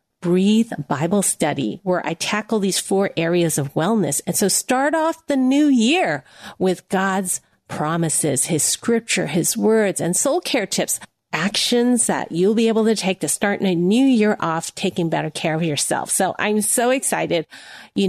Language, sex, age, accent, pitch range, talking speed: English, female, 40-59, American, 180-225 Hz, 175 wpm